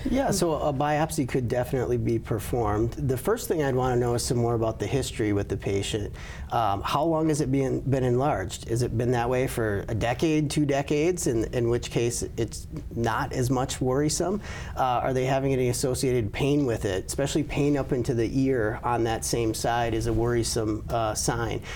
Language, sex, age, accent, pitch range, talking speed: English, male, 40-59, American, 115-140 Hz, 205 wpm